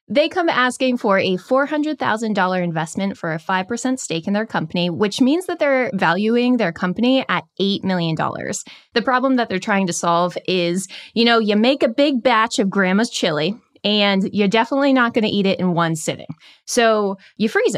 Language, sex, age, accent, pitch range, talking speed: English, female, 20-39, American, 185-250 Hz, 190 wpm